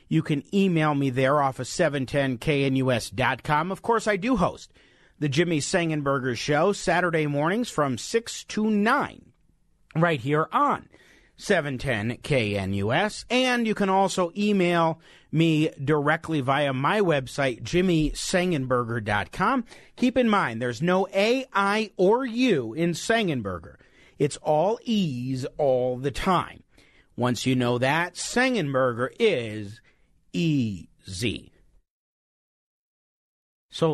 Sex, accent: male, American